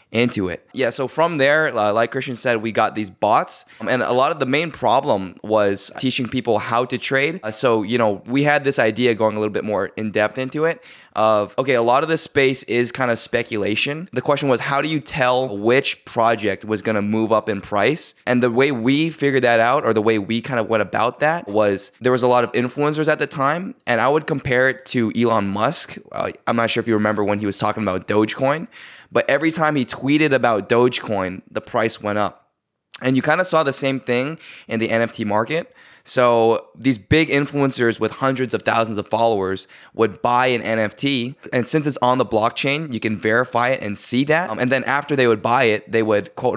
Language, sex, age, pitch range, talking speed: English, male, 20-39, 110-130 Hz, 230 wpm